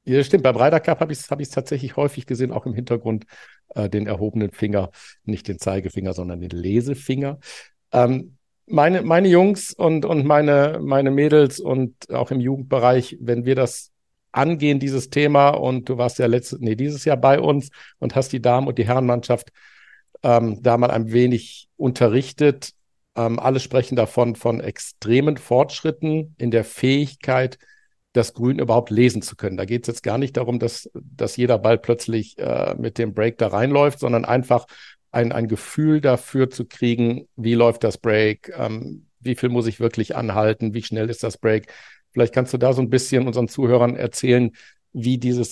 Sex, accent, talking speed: male, German, 180 wpm